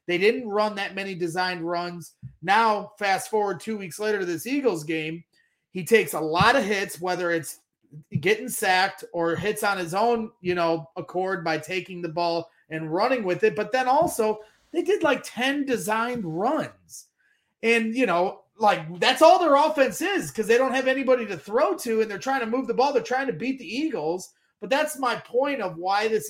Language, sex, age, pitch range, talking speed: English, male, 30-49, 175-230 Hz, 205 wpm